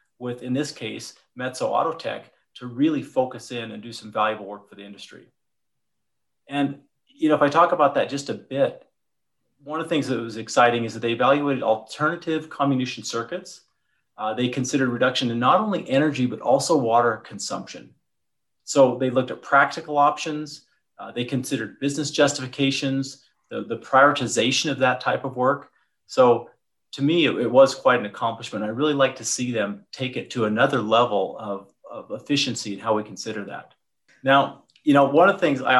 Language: English